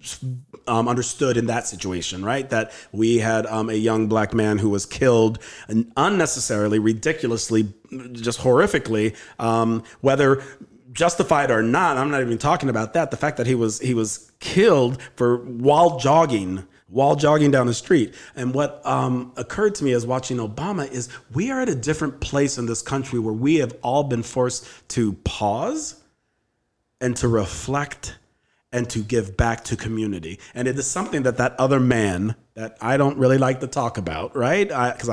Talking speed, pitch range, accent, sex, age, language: 175 wpm, 110-135 Hz, American, male, 40-59, English